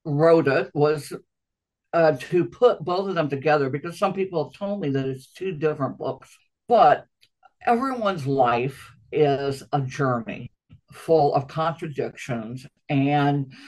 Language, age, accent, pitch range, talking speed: English, 60-79, American, 140-195 Hz, 135 wpm